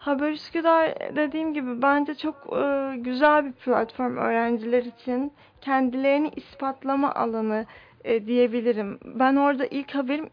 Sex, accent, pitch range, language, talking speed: female, native, 245-285 Hz, Turkish, 115 wpm